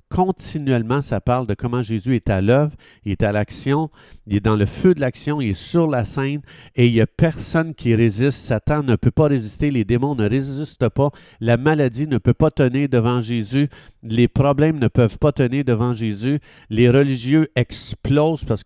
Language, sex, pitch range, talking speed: French, male, 110-140 Hz, 200 wpm